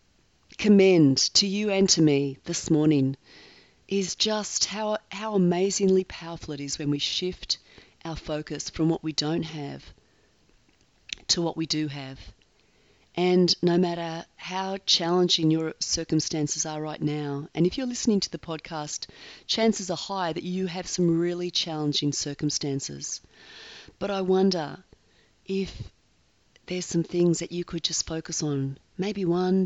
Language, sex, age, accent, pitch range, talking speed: English, female, 30-49, Australian, 150-185 Hz, 150 wpm